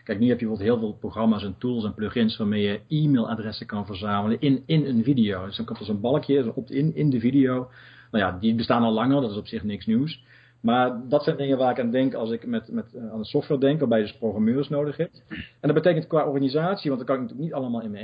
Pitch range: 110-135 Hz